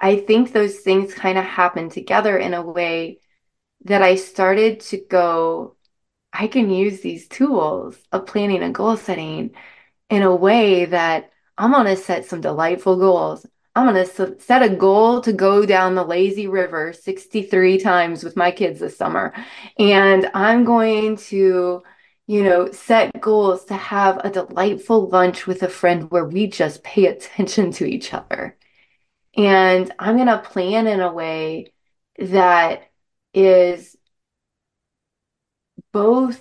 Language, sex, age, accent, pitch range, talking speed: English, female, 20-39, American, 180-210 Hz, 150 wpm